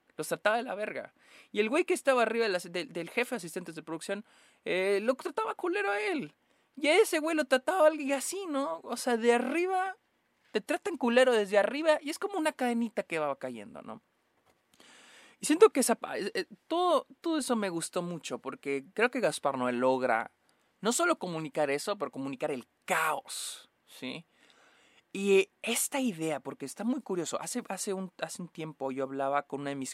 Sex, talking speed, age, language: male, 190 wpm, 20-39, Spanish